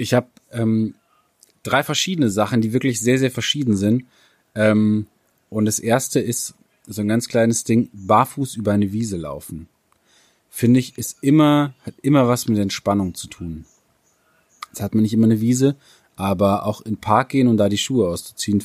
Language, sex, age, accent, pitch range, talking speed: German, male, 30-49, German, 100-120 Hz, 185 wpm